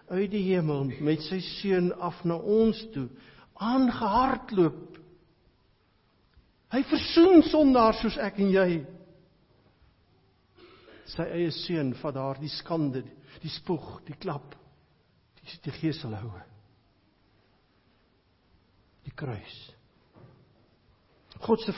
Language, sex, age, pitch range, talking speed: English, male, 60-79, 115-175 Hz, 100 wpm